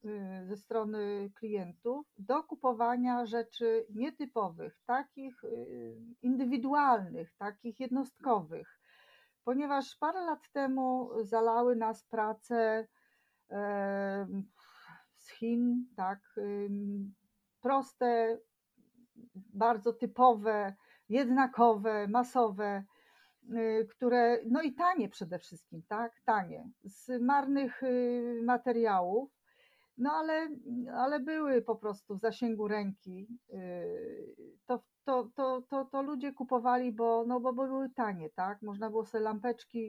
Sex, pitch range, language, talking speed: female, 205-255 Hz, Polish, 90 wpm